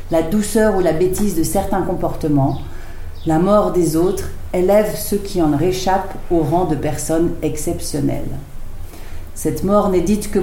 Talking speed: 155 wpm